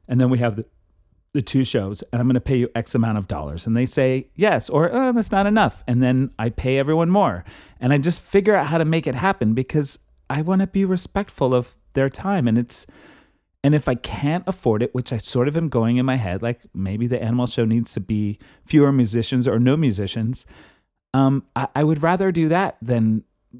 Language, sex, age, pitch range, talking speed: English, male, 30-49, 110-145 Hz, 230 wpm